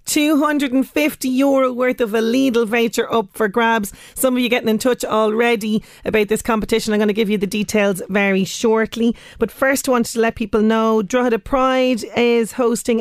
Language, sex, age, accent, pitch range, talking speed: English, female, 30-49, Irish, 200-235 Hz, 195 wpm